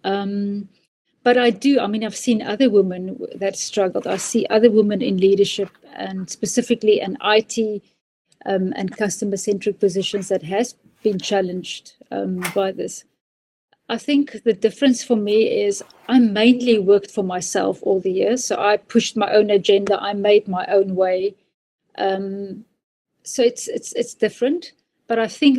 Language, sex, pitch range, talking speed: English, female, 195-230 Hz, 160 wpm